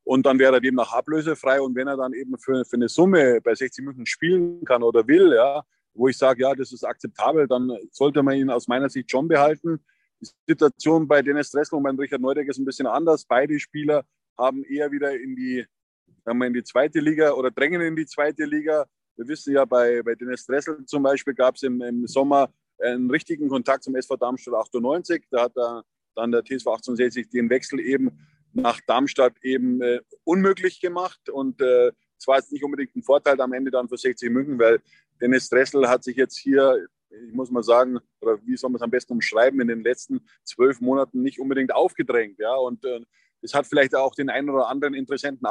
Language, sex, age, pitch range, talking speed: German, male, 20-39, 125-150 Hz, 215 wpm